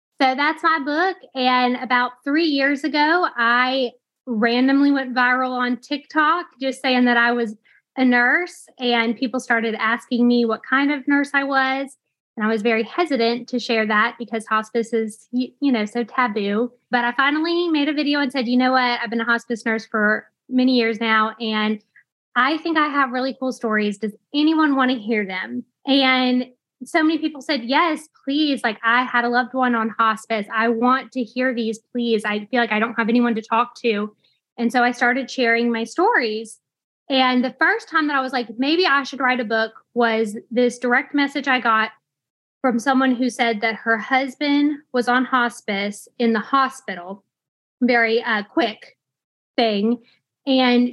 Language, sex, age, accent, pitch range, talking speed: English, female, 10-29, American, 225-265 Hz, 185 wpm